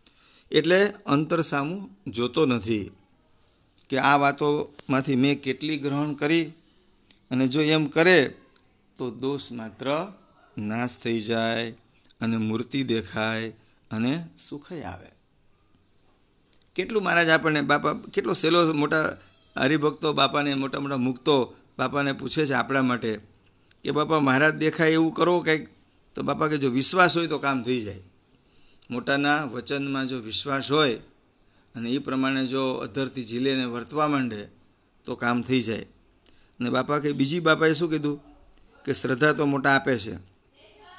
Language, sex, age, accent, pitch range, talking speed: English, male, 50-69, Indian, 115-155 Hz, 120 wpm